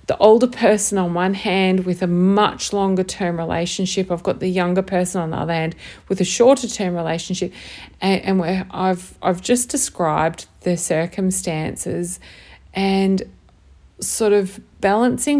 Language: English